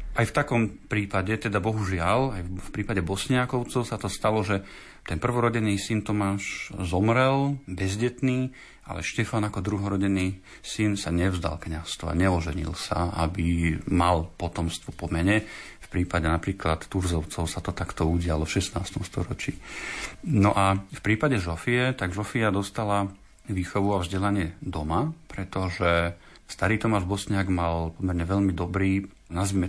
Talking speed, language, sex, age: 135 wpm, Slovak, male, 40-59